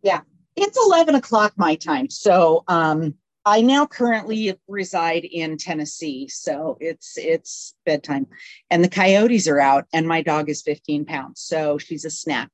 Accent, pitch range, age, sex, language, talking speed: American, 155-185 Hz, 40-59, female, English, 160 wpm